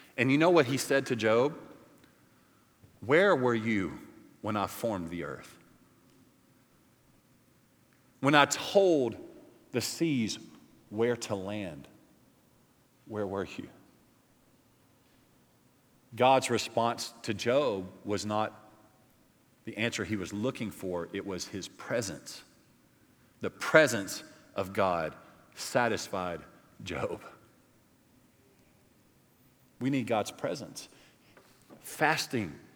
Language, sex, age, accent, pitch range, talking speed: English, male, 40-59, American, 110-135 Hz, 100 wpm